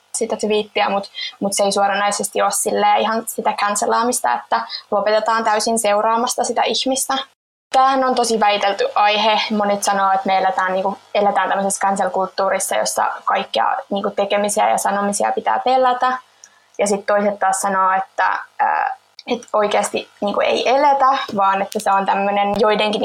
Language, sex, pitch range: Finnish, female, 200-245 Hz